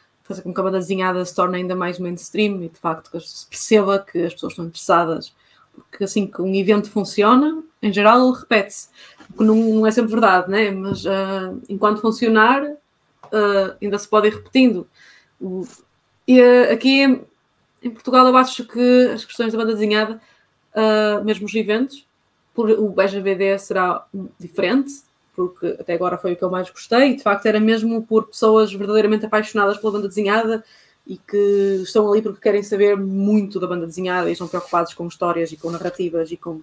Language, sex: Portuguese, female